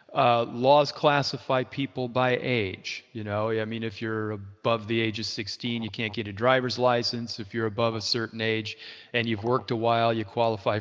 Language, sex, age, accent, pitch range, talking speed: English, male, 40-59, American, 115-145 Hz, 200 wpm